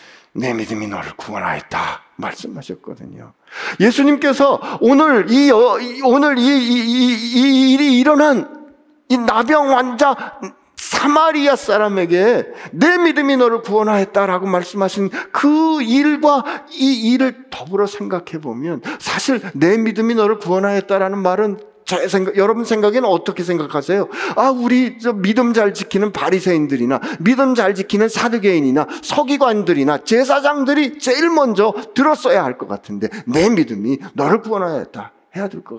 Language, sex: Korean, male